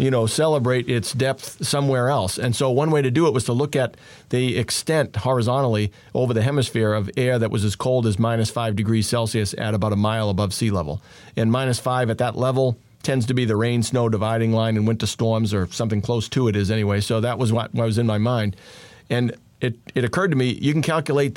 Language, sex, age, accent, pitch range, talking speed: English, male, 40-59, American, 110-135 Hz, 230 wpm